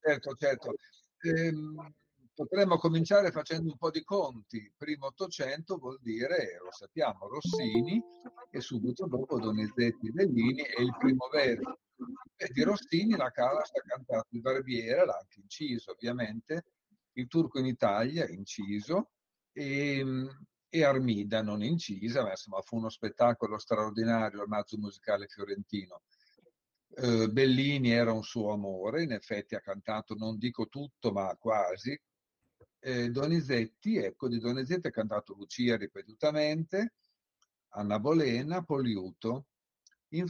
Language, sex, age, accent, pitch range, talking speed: Italian, male, 50-69, native, 110-150 Hz, 125 wpm